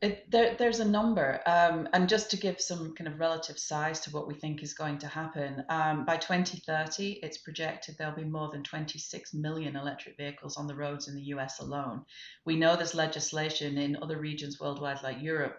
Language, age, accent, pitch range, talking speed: English, 30-49, British, 145-170 Hz, 205 wpm